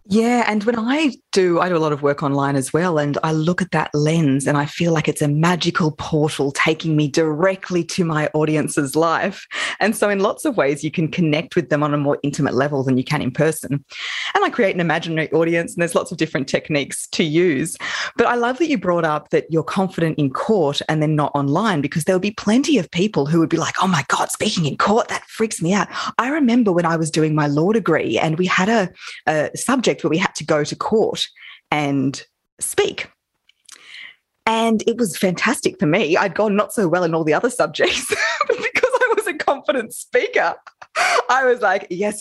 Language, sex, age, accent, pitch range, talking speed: English, female, 20-39, Australian, 155-220 Hz, 225 wpm